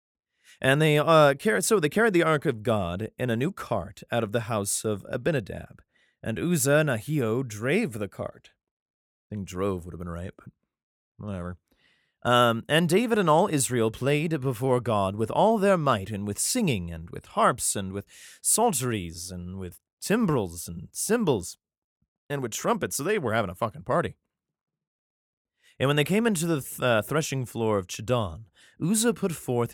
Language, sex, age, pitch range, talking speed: English, male, 30-49, 100-145 Hz, 180 wpm